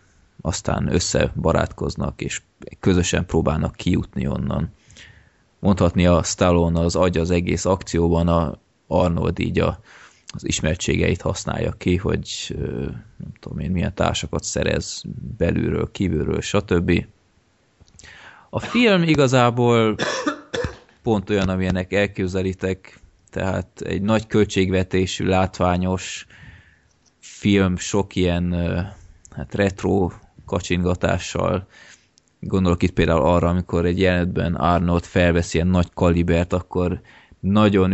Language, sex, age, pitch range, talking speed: Hungarian, male, 20-39, 85-100 Hz, 105 wpm